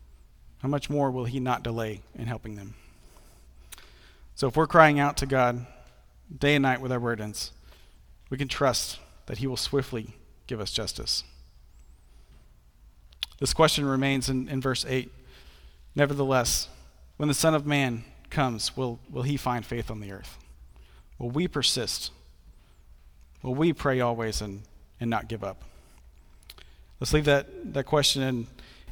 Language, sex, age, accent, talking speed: English, male, 40-59, American, 150 wpm